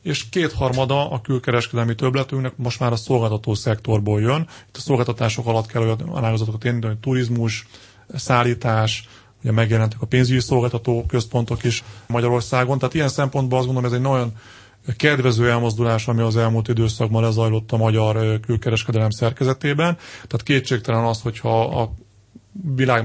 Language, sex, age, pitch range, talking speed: Hungarian, male, 30-49, 110-130 Hz, 145 wpm